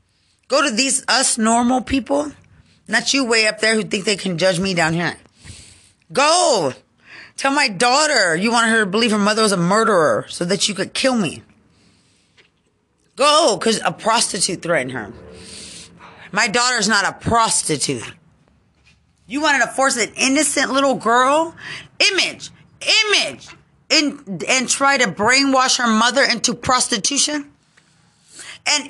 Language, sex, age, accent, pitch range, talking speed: English, female, 30-49, American, 175-260 Hz, 145 wpm